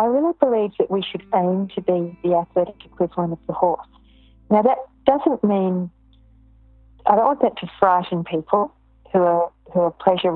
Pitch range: 170-195 Hz